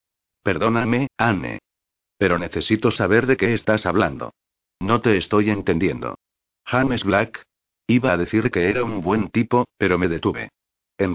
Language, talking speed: Spanish, 145 wpm